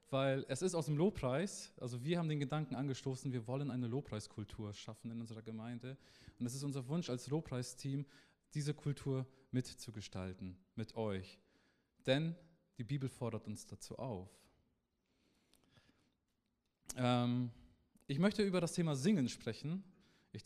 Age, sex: 20-39, male